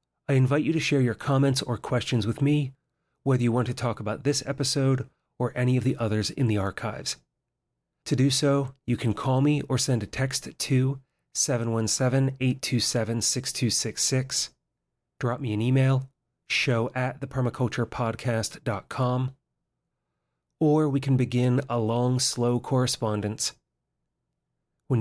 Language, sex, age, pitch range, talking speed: English, male, 30-49, 115-140 Hz, 135 wpm